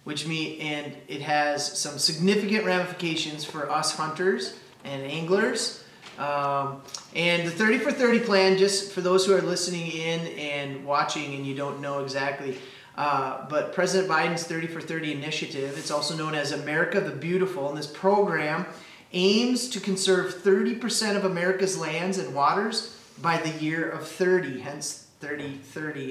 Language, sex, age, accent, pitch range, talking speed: English, male, 30-49, American, 145-185 Hz, 155 wpm